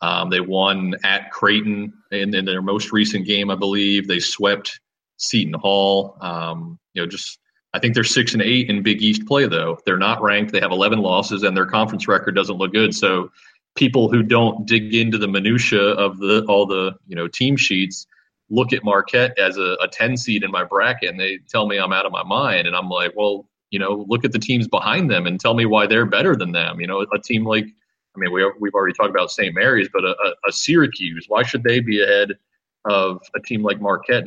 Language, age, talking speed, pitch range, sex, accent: English, 30-49, 230 wpm, 95-110 Hz, male, American